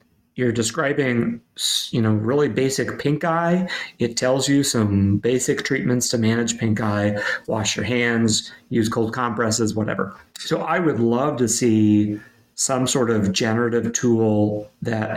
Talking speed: 145 wpm